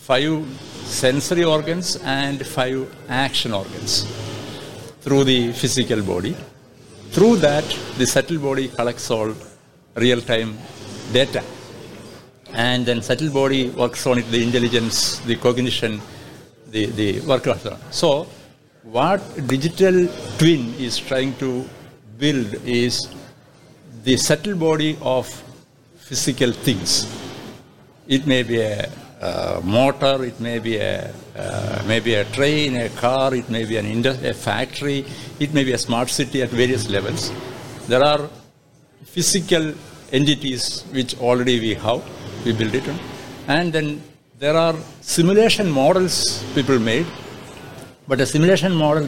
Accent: Indian